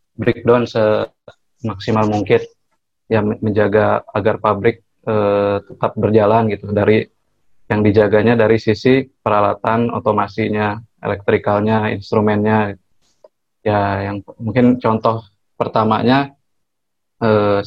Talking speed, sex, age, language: 90 wpm, male, 20-39, Indonesian